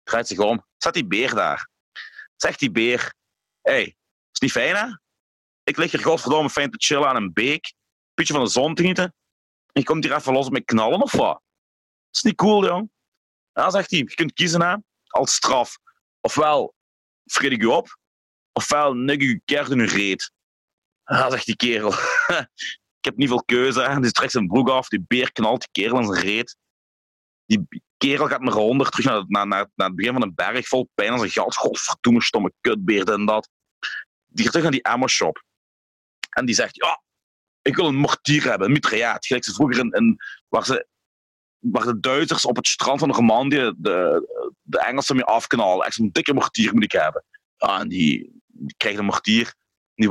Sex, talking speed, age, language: male, 210 wpm, 40-59, Dutch